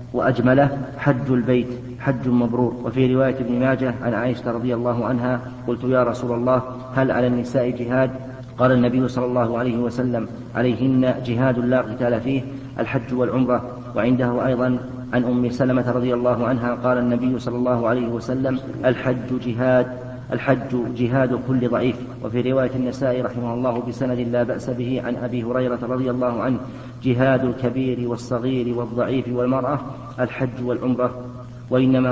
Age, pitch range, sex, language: 40-59, 120-130 Hz, male, Arabic